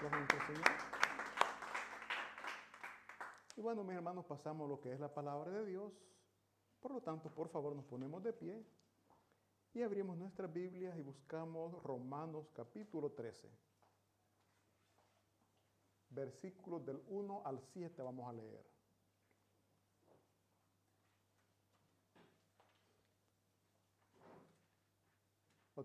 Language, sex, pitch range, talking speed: Italian, male, 110-175 Hz, 90 wpm